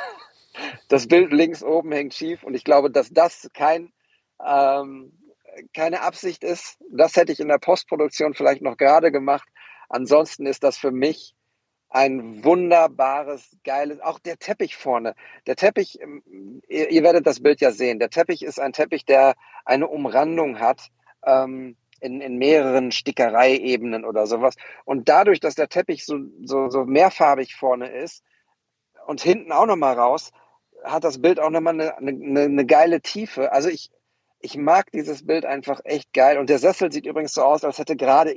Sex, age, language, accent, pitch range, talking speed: male, 50-69, German, German, 135-165 Hz, 165 wpm